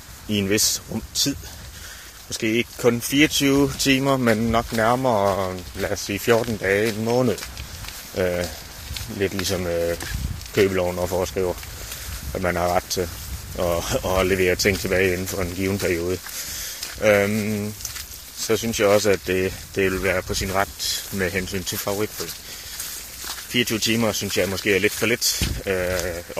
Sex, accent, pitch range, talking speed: male, native, 90-110 Hz, 160 wpm